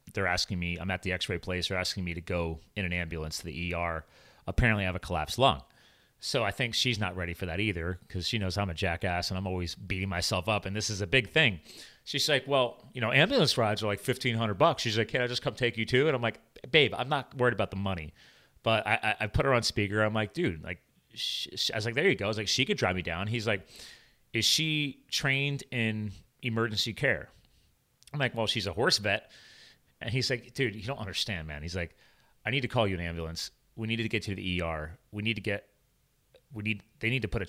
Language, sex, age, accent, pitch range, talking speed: English, male, 30-49, American, 90-120 Hz, 255 wpm